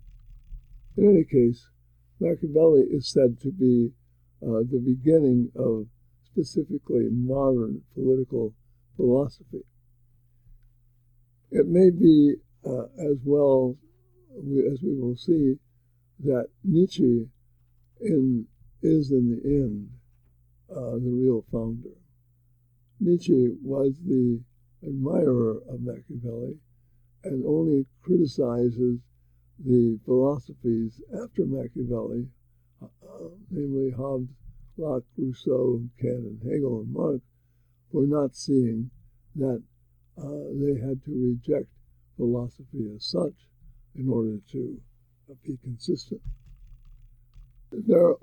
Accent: American